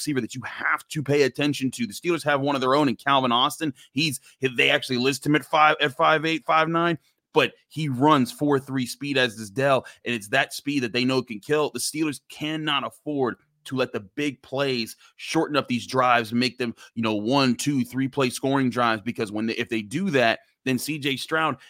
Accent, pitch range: American, 125-150 Hz